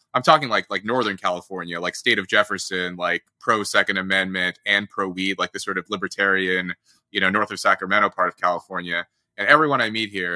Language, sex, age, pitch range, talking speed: English, male, 20-39, 95-130 Hz, 205 wpm